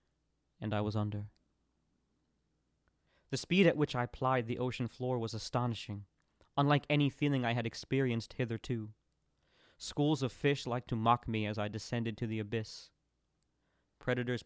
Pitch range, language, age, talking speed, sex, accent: 110-130 Hz, English, 20-39, 150 wpm, male, American